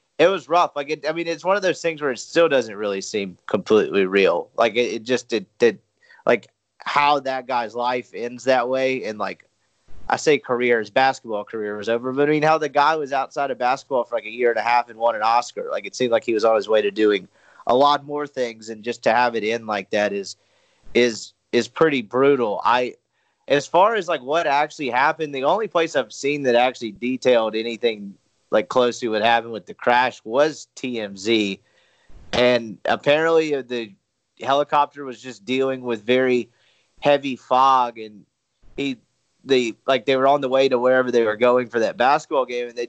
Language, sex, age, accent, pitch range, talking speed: English, male, 30-49, American, 115-135 Hz, 210 wpm